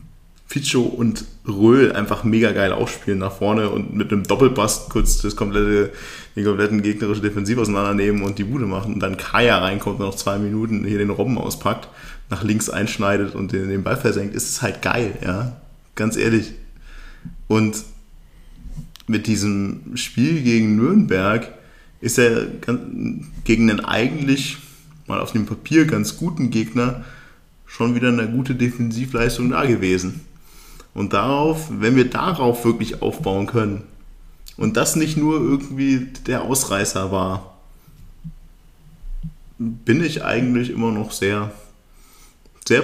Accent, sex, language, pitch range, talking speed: German, male, German, 100-125 Hz, 135 wpm